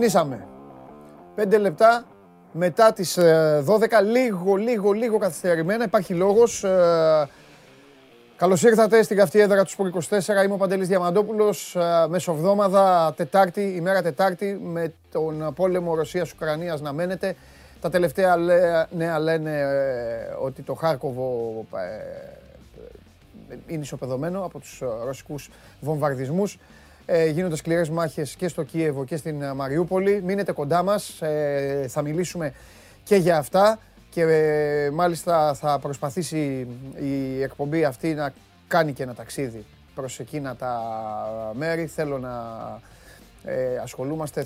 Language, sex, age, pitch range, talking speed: Greek, male, 30-49, 135-180 Hz, 115 wpm